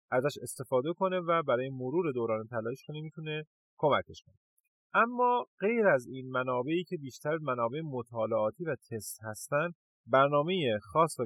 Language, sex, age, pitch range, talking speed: Persian, male, 30-49, 115-155 Hz, 145 wpm